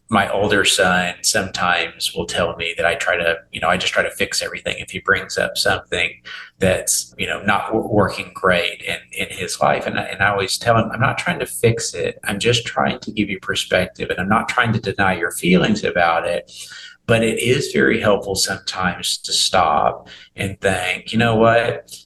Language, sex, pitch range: English, male, 95-110 Hz